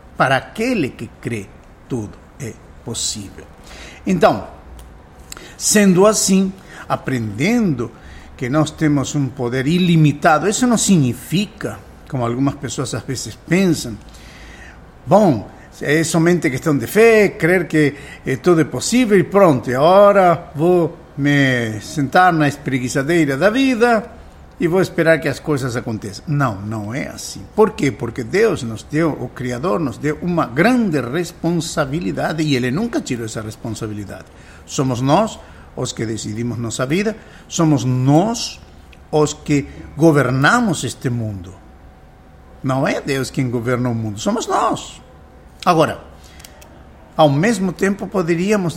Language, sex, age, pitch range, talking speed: Portuguese, male, 60-79, 115-170 Hz, 130 wpm